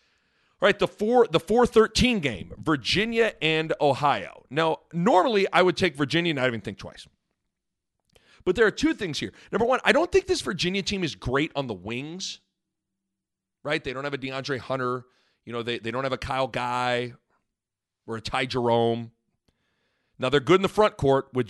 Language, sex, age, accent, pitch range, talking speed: English, male, 40-59, American, 125-195 Hz, 190 wpm